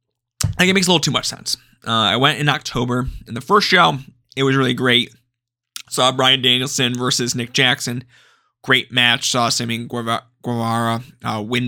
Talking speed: 175 wpm